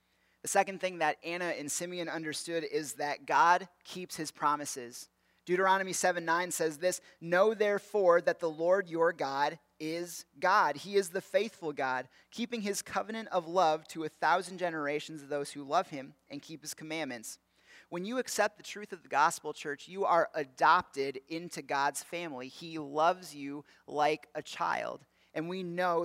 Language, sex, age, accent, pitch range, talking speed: English, male, 30-49, American, 150-185 Hz, 170 wpm